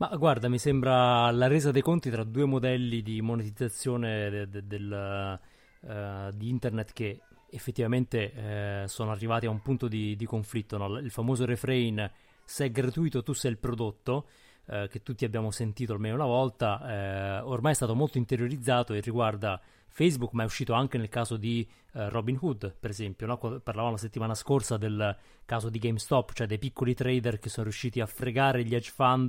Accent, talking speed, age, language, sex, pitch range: native, 170 wpm, 30-49, Italian, male, 110-130 Hz